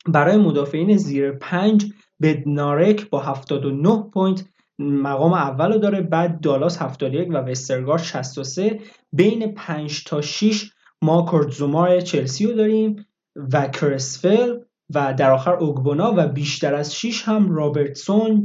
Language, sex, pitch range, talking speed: Persian, male, 145-200 Hz, 125 wpm